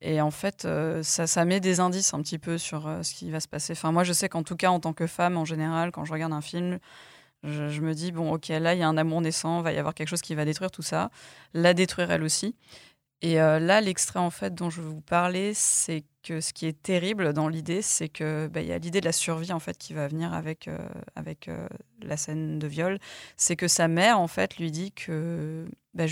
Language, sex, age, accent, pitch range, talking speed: French, female, 20-39, French, 160-185 Hz, 270 wpm